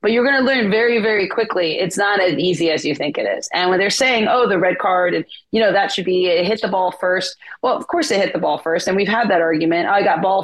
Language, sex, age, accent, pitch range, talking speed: English, female, 30-49, American, 170-220 Hz, 305 wpm